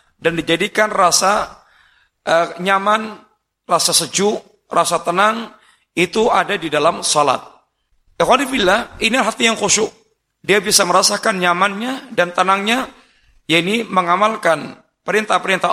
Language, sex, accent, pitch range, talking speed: Indonesian, male, native, 170-220 Hz, 110 wpm